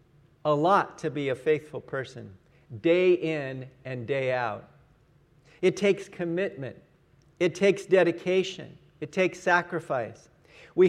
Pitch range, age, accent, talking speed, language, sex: 150-185 Hz, 50-69, American, 120 wpm, English, male